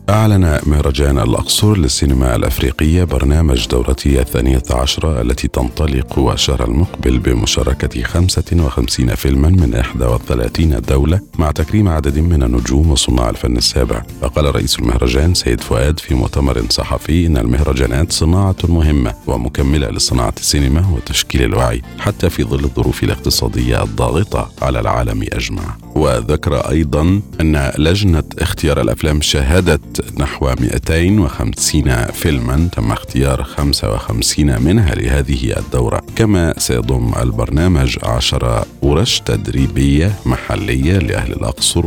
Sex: male